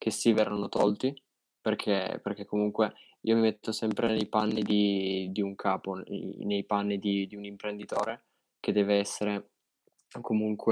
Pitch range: 100-110 Hz